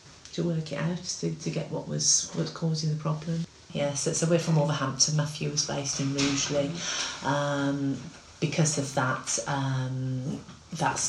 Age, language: 30-49, English